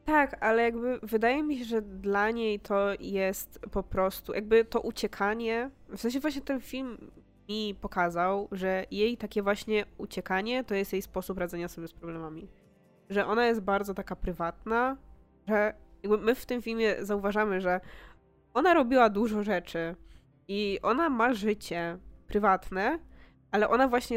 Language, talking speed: Polish, 150 wpm